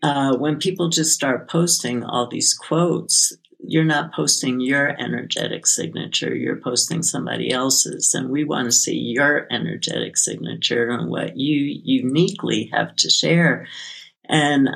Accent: American